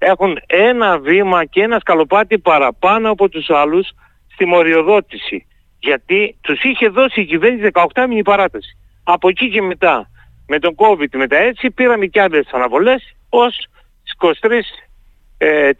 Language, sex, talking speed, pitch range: Greek, male, 135 wpm, 160-230 Hz